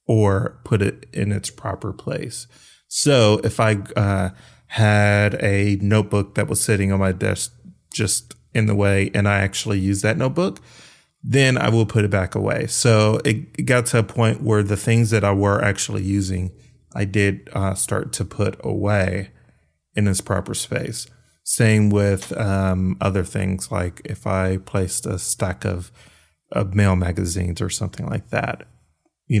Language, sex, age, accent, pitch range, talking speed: English, male, 30-49, American, 95-110 Hz, 170 wpm